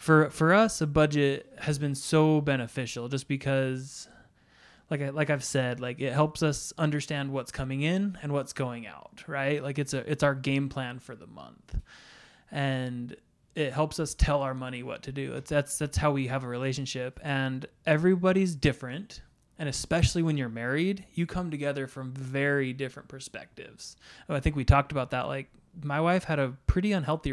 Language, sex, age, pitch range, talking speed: English, male, 20-39, 135-155 Hz, 190 wpm